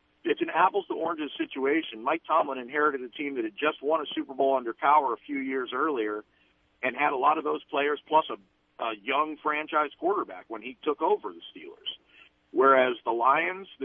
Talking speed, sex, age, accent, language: 200 wpm, male, 50-69, American, English